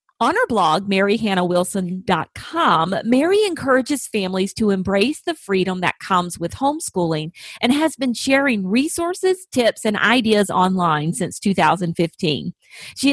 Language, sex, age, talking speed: English, female, 40-59, 125 wpm